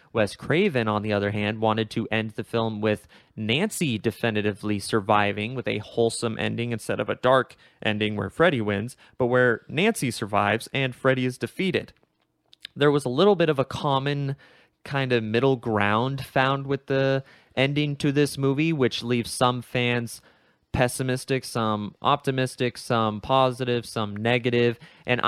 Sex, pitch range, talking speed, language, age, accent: male, 110-135 Hz, 155 wpm, English, 20-39, American